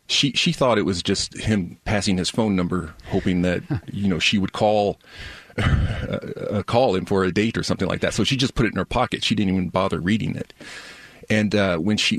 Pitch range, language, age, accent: 90-105 Hz, English, 30-49, American